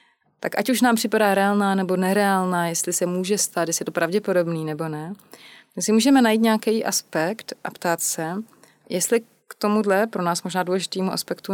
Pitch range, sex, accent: 155-190 Hz, female, native